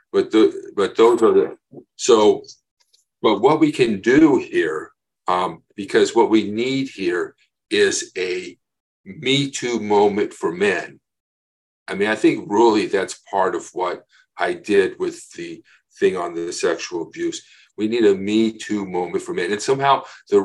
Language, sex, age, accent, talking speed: English, male, 50-69, American, 160 wpm